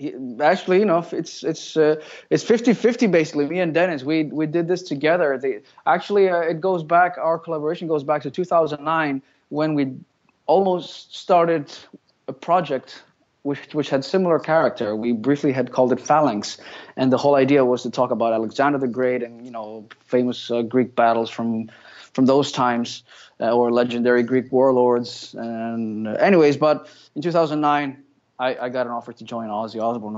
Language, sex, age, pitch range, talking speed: English, male, 20-39, 120-155 Hz, 175 wpm